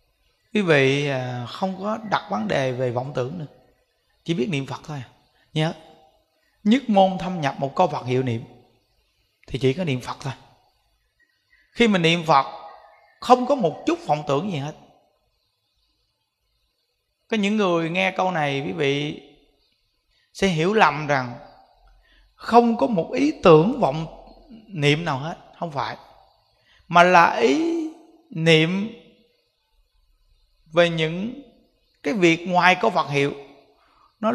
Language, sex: Vietnamese, male